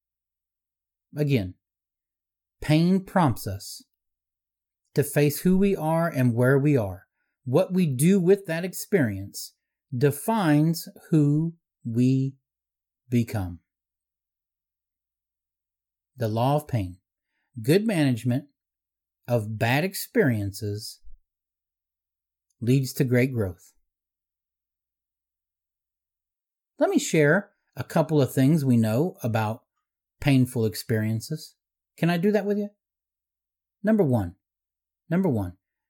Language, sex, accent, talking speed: English, male, American, 95 wpm